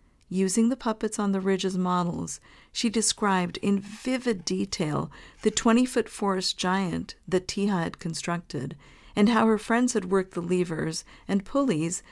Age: 50-69